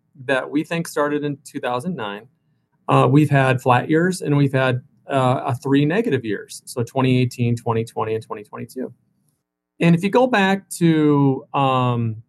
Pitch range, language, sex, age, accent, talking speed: 125-165 Hz, English, male, 40-59, American, 145 wpm